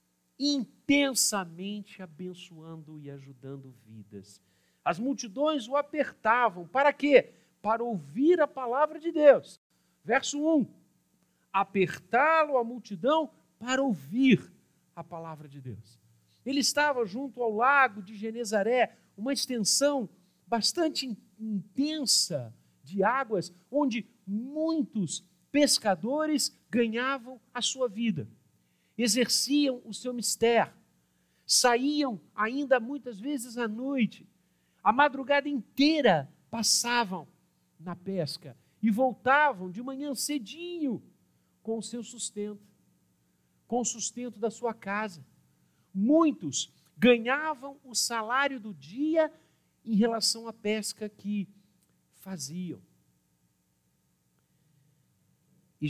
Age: 50-69